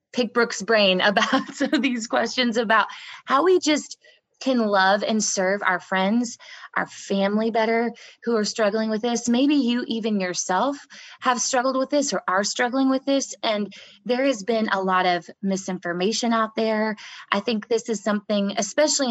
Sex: female